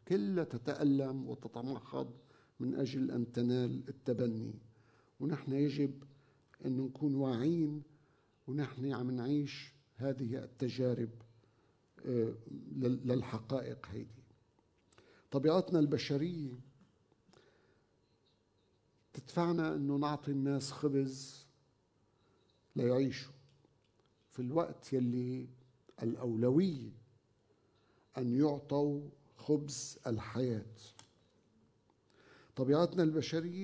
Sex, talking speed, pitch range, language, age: male, 70 wpm, 120-150 Hz, Arabic, 50-69